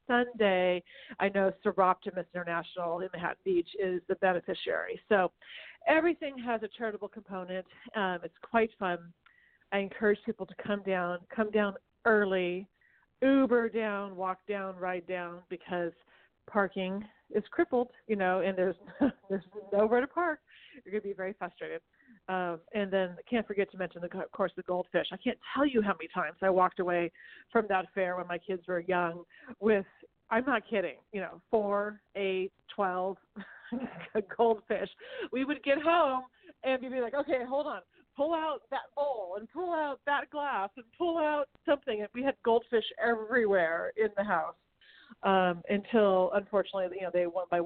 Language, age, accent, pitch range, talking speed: English, 40-59, American, 185-245 Hz, 170 wpm